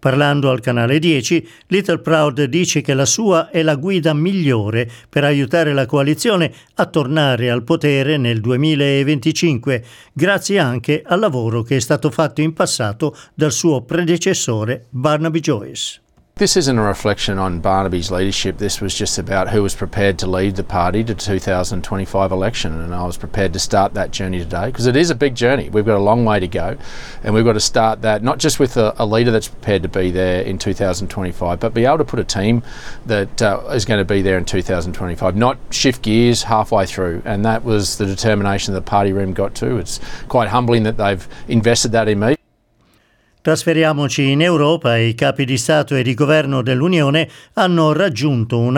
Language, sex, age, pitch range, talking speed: Italian, male, 50-69, 110-155 Hz, 190 wpm